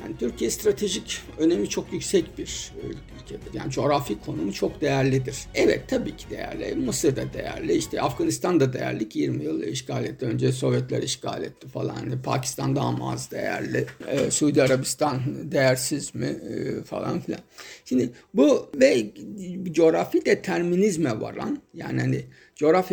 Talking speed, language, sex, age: 140 wpm, Turkish, male, 60-79